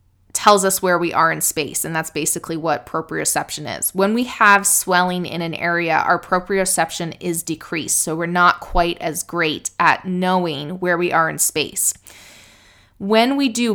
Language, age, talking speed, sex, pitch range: English, 20-39, 175 wpm, female, 170-205 Hz